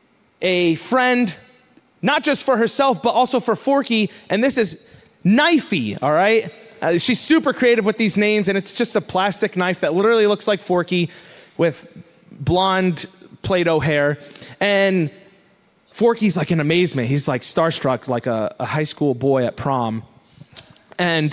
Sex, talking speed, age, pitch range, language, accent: male, 155 wpm, 30-49, 160-220 Hz, English, American